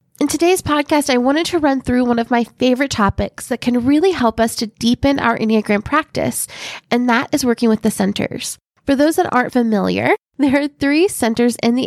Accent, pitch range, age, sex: American, 220-275 Hz, 20-39, female